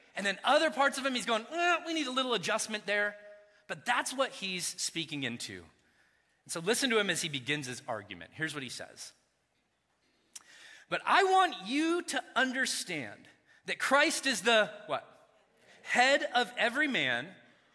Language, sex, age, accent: English, male, 30-49, American